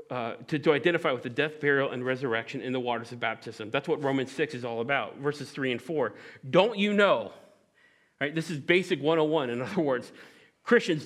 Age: 40-59